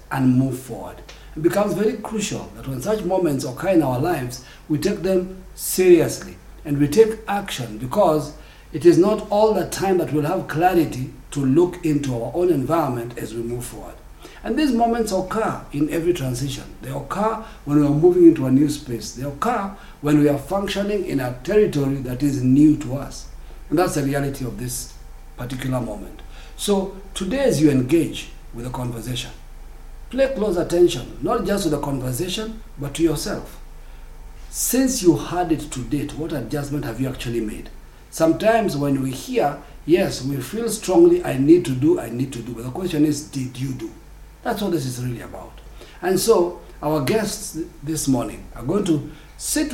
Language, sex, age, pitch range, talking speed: English, male, 50-69, 130-185 Hz, 185 wpm